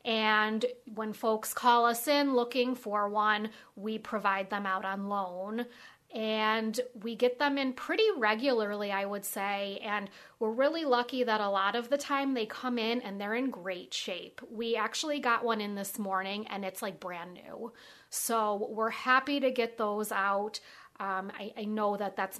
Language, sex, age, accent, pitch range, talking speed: English, female, 30-49, American, 215-250 Hz, 180 wpm